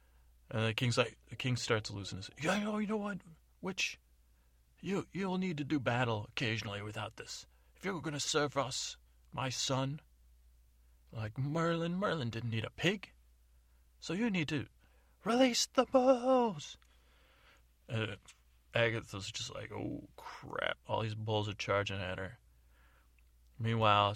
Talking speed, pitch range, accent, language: 155 wpm, 90-135 Hz, American, English